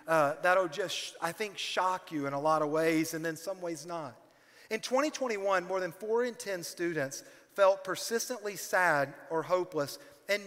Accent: American